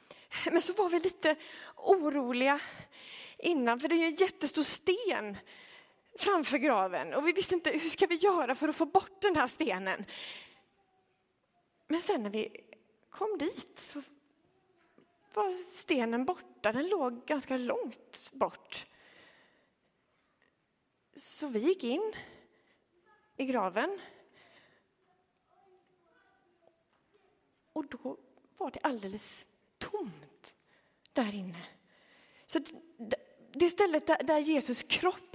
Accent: native